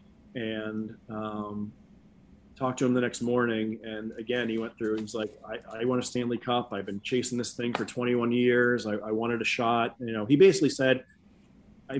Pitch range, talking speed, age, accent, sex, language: 110-130 Hz, 200 wpm, 30-49, American, male, English